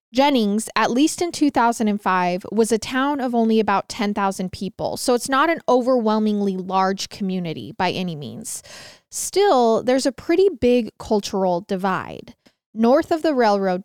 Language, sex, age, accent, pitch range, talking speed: English, female, 20-39, American, 190-235 Hz, 145 wpm